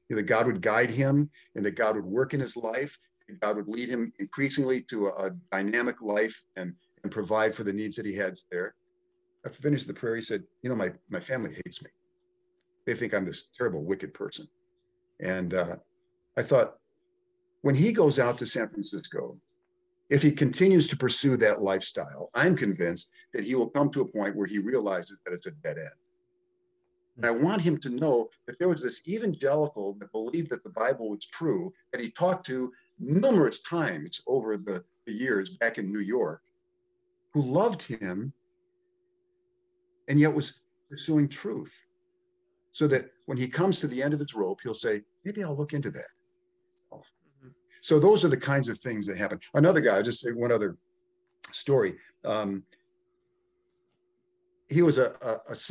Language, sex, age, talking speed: English, male, 50-69, 180 wpm